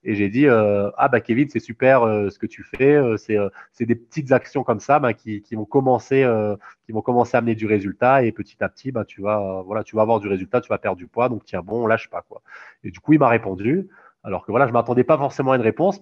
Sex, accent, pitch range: male, French, 105-130 Hz